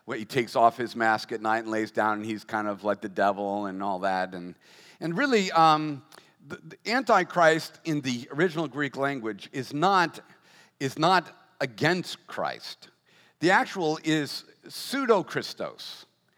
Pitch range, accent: 140-235 Hz, American